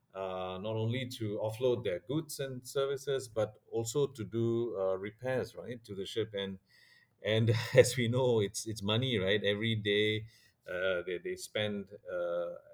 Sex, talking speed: male, 165 wpm